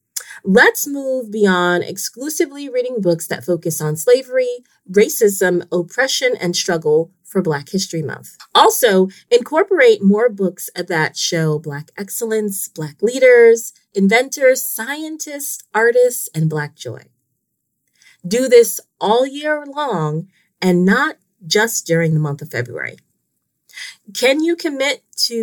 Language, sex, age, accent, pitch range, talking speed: English, female, 30-49, American, 170-255 Hz, 120 wpm